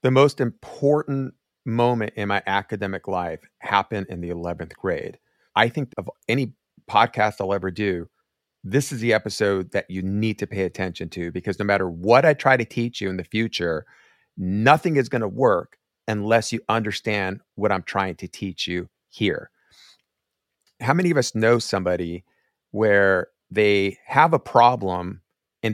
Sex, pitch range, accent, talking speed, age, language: male, 95-125 Hz, American, 165 wpm, 40-59, English